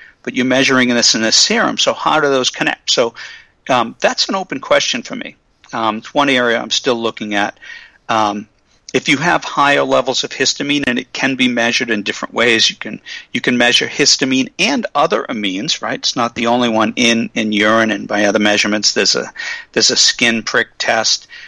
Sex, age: male, 50-69